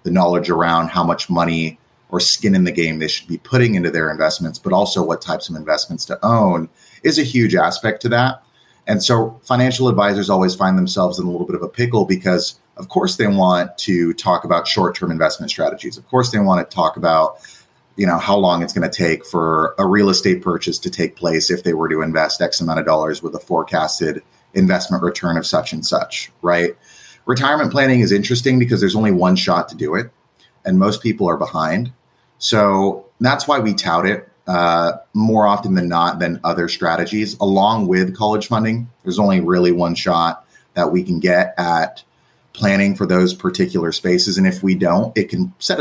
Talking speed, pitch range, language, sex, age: 205 wpm, 85-115 Hz, English, male, 30-49